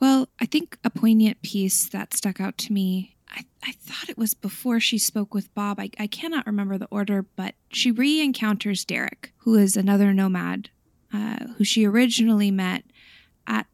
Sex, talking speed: female, 180 wpm